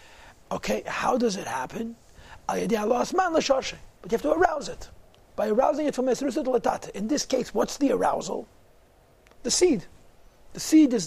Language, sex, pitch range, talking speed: English, male, 215-265 Hz, 155 wpm